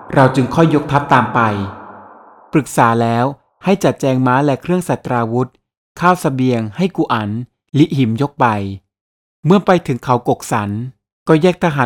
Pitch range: 120-160 Hz